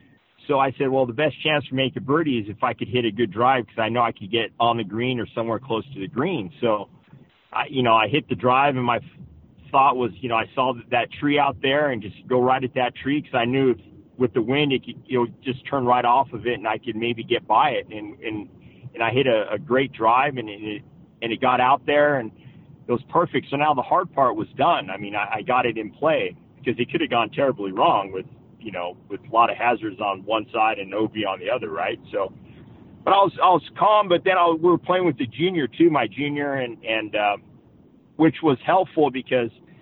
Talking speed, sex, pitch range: 260 wpm, male, 115-145 Hz